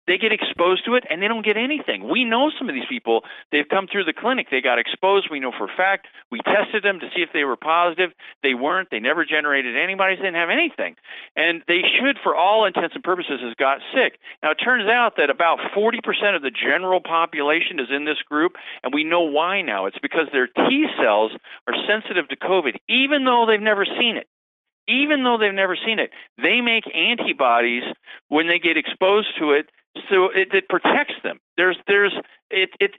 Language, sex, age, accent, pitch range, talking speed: English, male, 50-69, American, 150-220 Hz, 215 wpm